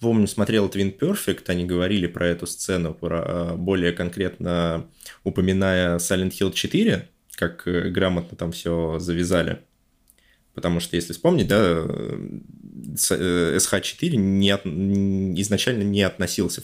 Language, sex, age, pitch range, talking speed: Russian, male, 20-39, 90-105 Hz, 115 wpm